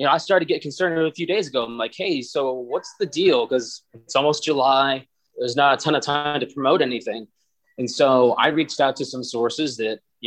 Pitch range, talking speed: 130-155 Hz, 240 wpm